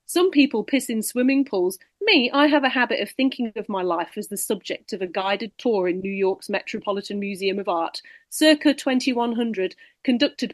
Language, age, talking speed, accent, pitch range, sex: English, 40-59, 190 wpm, British, 195-250 Hz, female